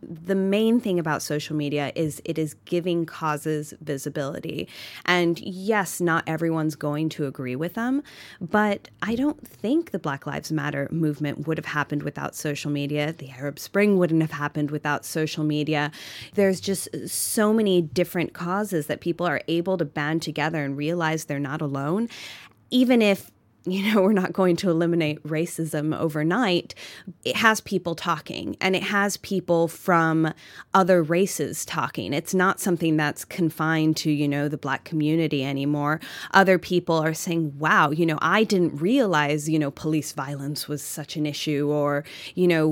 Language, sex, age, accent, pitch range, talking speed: English, female, 20-39, American, 150-180 Hz, 165 wpm